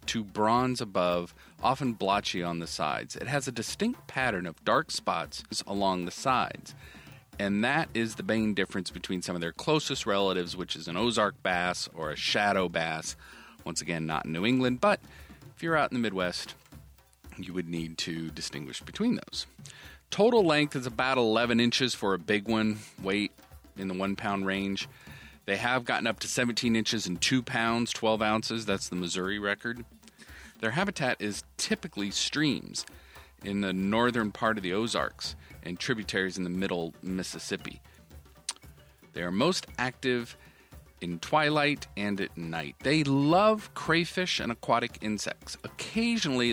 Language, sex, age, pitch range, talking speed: English, male, 40-59, 85-120 Hz, 160 wpm